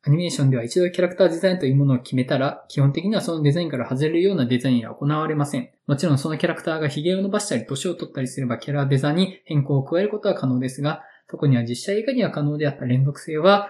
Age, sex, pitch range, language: 20-39, male, 135-175 Hz, Japanese